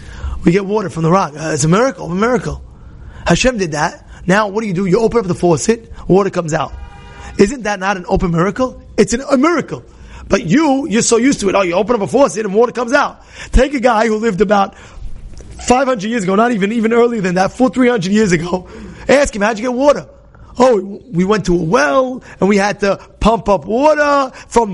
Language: English